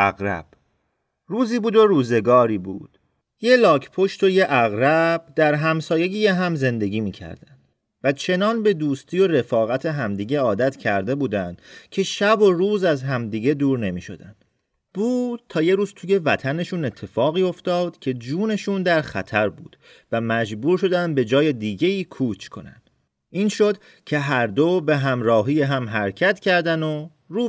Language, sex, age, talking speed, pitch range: Persian, male, 40-59, 150 wpm, 120-185 Hz